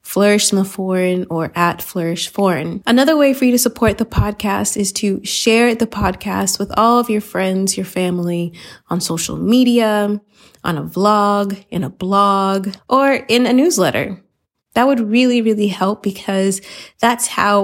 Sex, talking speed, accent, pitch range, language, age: female, 165 wpm, American, 190-240 Hz, English, 20-39